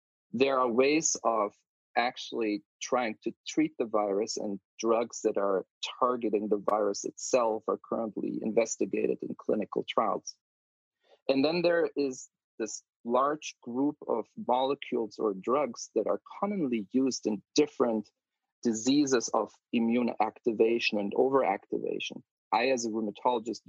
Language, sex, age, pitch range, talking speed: English, male, 40-59, 110-140 Hz, 130 wpm